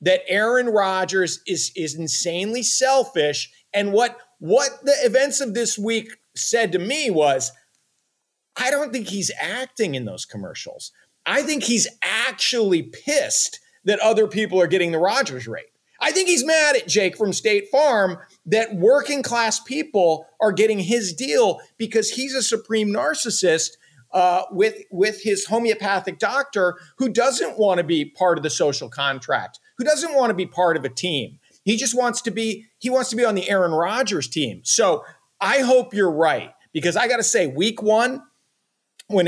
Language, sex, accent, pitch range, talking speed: English, male, American, 175-245 Hz, 175 wpm